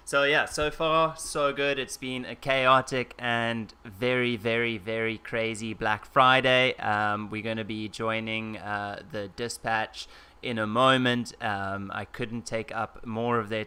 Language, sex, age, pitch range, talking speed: English, male, 20-39, 105-125 Hz, 160 wpm